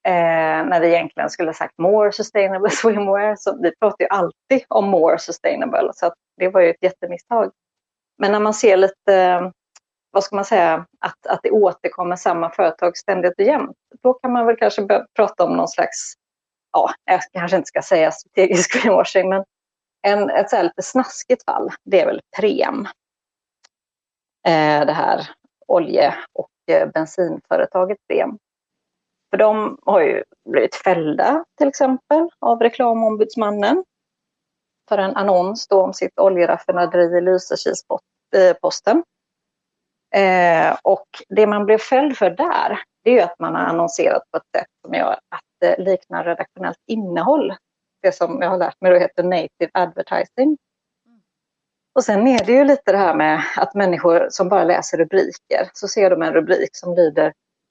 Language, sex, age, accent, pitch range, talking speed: Swedish, female, 30-49, native, 180-220 Hz, 160 wpm